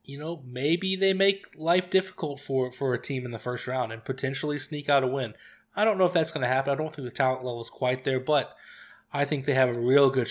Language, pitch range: English, 125-170 Hz